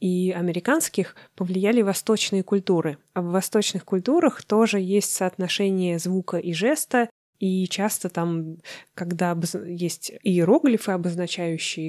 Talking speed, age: 110 wpm, 20-39